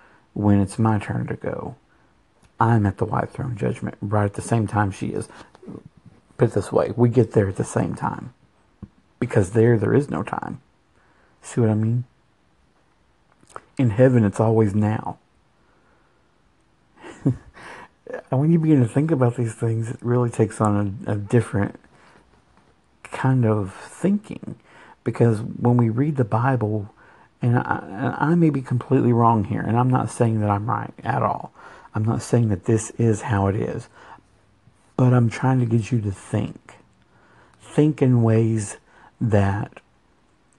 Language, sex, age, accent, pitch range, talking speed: English, male, 50-69, American, 105-125 Hz, 160 wpm